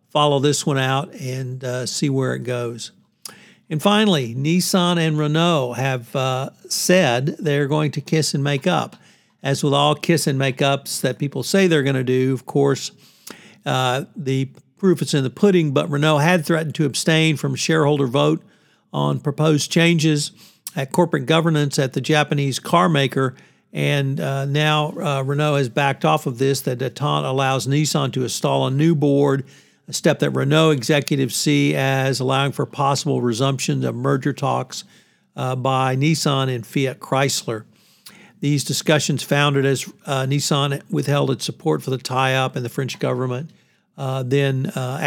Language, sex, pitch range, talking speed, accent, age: English, male, 130-155 Hz, 165 wpm, American, 60-79